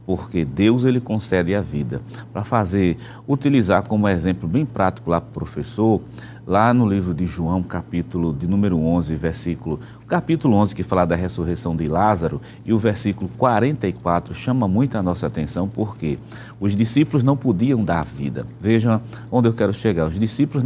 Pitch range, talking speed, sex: 85-115 Hz, 170 wpm, male